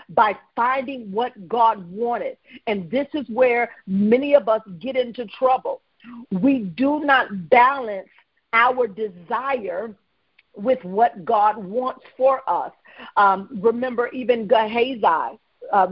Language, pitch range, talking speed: English, 205-260 Hz, 120 wpm